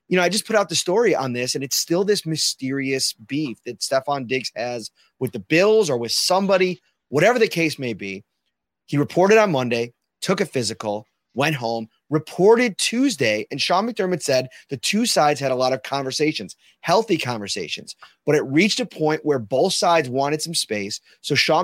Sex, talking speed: male, 190 wpm